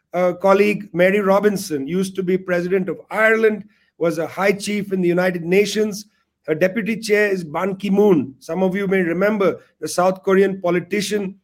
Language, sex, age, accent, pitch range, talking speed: English, male, 50-69, Indian, 180-215 Hz, 180 wpm